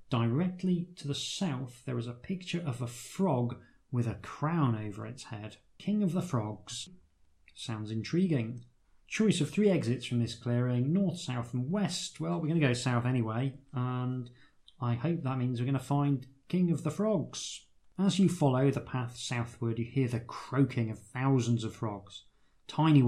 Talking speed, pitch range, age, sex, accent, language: 180 wpm, 115-150 Hz, 30-49, male, British, English